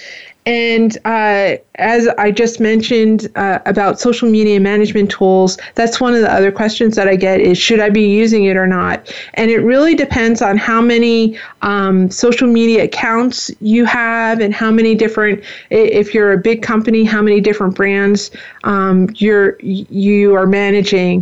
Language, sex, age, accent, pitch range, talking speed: English, female, 30-49, American, 205-235 Hz, 170 wpm